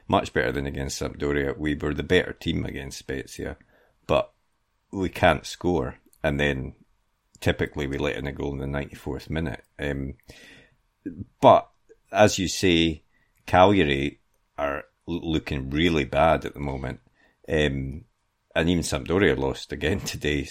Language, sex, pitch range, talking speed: English, male, 70-80 Hz, 140 wpm